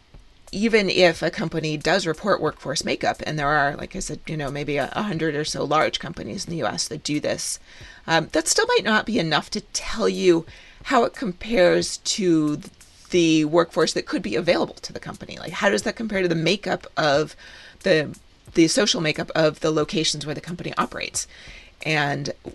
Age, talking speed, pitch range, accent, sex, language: 30-49, 195 wpm, 150-180 Hz, American, female, English